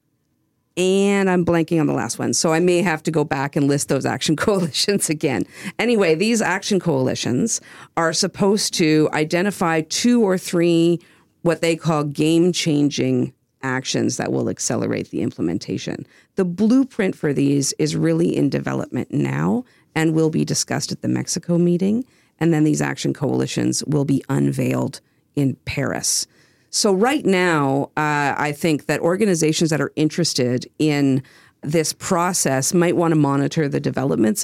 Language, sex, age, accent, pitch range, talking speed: English, female, 50-69, American, 145-180 Hz, 155 wpm